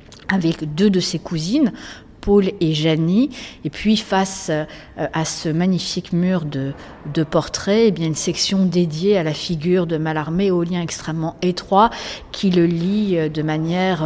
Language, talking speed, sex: French, 160 wpm, female